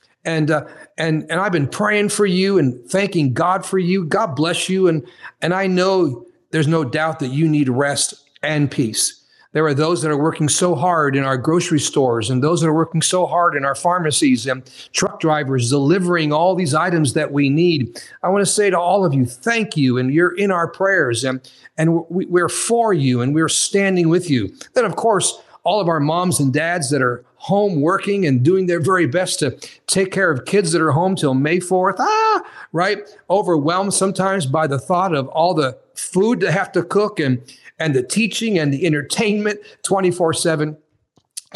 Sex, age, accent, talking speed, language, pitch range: male, 50-69, American, 200 wpm, English, 140-185 Hz